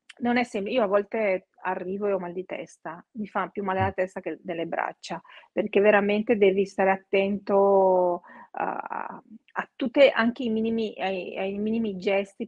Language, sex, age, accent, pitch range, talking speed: Italian, female, 40-59, native, 185-215 Hz, 175 wpm